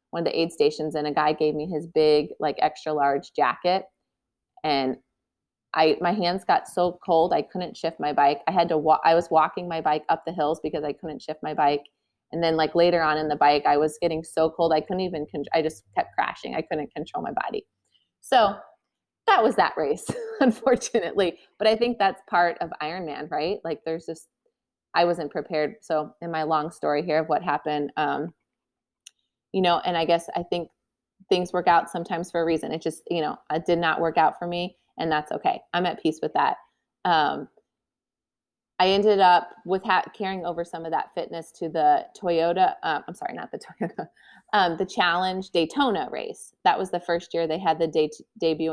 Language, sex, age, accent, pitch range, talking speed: English, female, 30-49, American, 155-185 Hz, 205 wpm